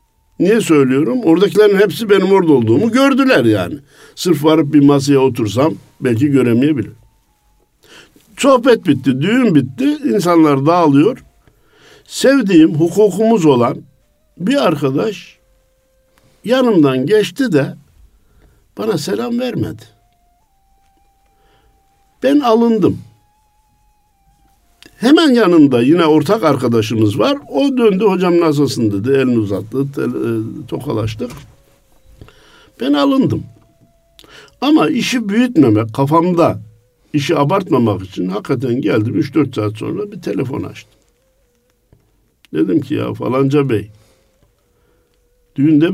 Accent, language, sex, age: native, Turkish, male, 60-79